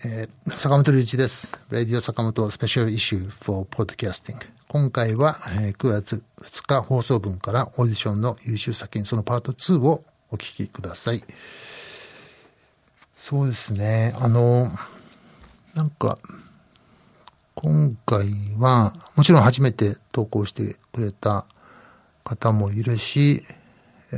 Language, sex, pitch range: Japanese, male, 105-130 Hz